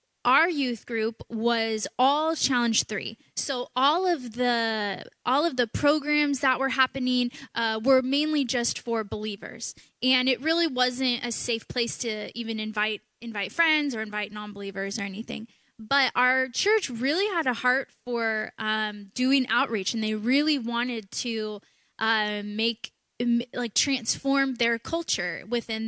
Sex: female